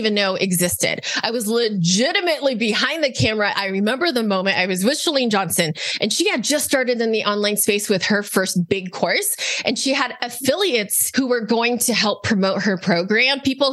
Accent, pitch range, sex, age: American, 205-270 Hz, female, 20-39